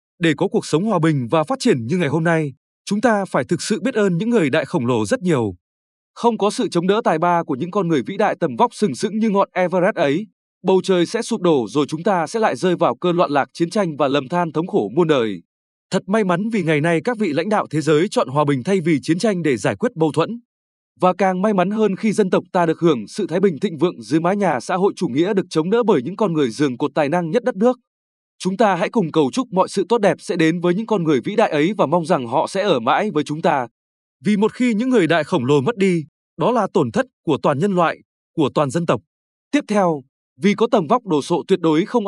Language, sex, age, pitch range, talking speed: Vietnamese, male, 20-39, 155-205 Hz, 280 wpm